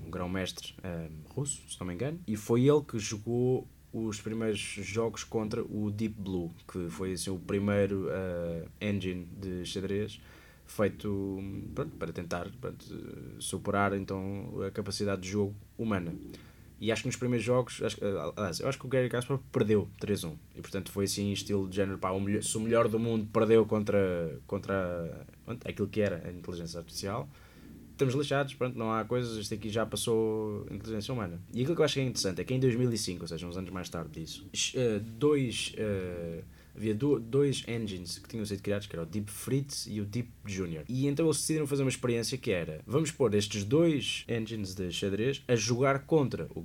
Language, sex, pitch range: Portuguese, male, 95-135 Hz